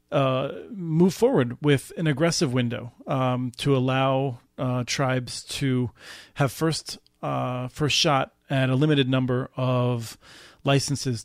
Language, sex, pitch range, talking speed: English, male, 125-145 Hz, 130 wpm